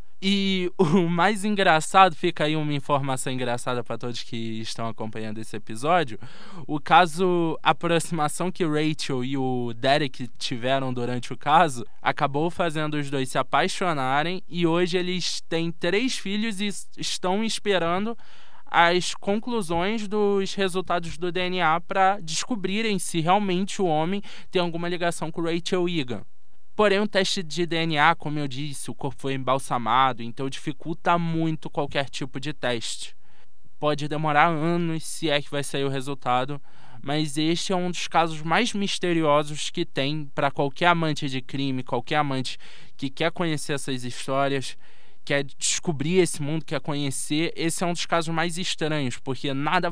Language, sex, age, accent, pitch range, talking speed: Portuguese, male, 20-39, Brazilian, 135-175 Hz, 155 wpm